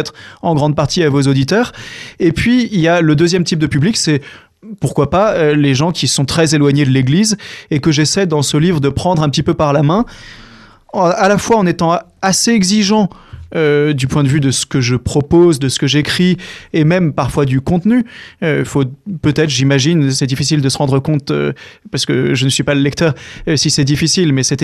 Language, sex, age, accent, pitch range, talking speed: French, male, 30-49, French, 140-170 Hz, 225 wpm